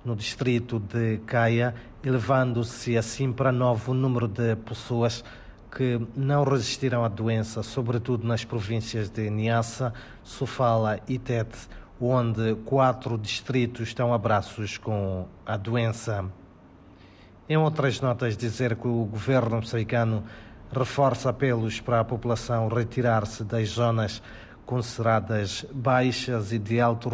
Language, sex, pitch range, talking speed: Portuguese, male, 110-125 Hz, 120 wpm